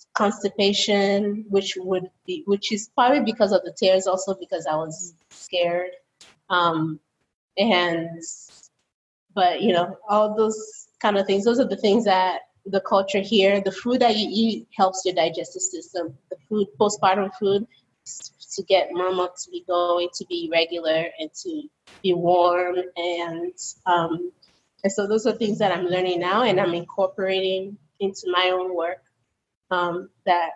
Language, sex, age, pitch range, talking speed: English, female, 20-39, 170-200 Hz, 155 wpm